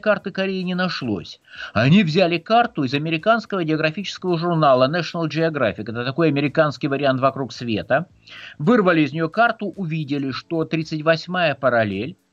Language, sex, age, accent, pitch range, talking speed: Russian, male, 50-69, native, 135-190 Hz, 130 wpm